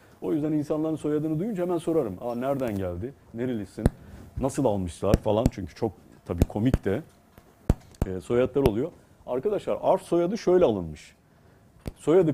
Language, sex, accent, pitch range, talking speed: Turkish, male, native, 95-135 Hz, 130 wpm